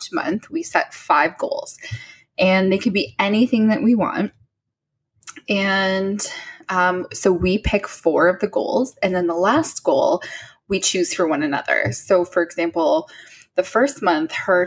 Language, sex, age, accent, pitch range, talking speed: English, female, 10-29, American, 180-280 Hz, 160 wpm